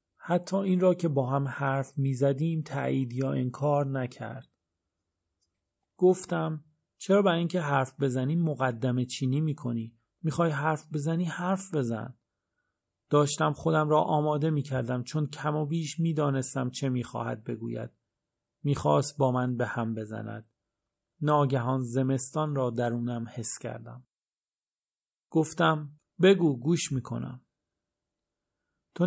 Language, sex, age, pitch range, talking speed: Persian, male, 40-59, 120-155 Hz, 115 wpm